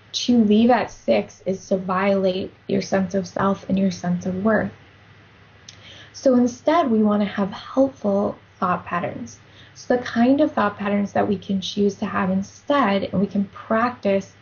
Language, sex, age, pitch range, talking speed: English, female, 10-29, 190-215 Hz, 170 wpm